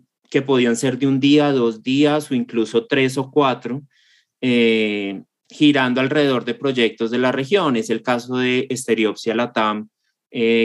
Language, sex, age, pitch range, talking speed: Spanish, male, 20-39, 110-130 Hz, 160 wpm